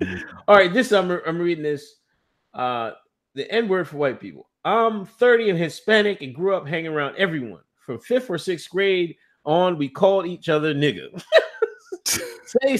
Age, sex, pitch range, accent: 30-49, male, 155-210 Hz, American